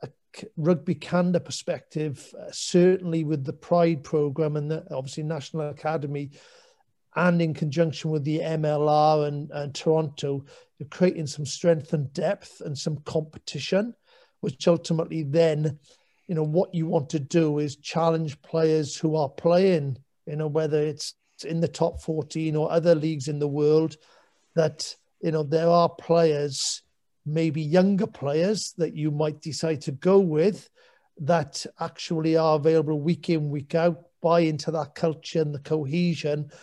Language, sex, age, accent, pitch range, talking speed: English, male, 50-69, British, 155-170 Hz, 150 wpm